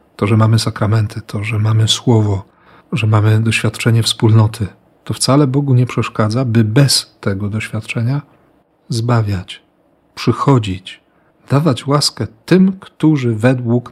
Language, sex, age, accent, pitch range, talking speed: Polish, male, 40-59, native, 105-125 Hz, 120 wpm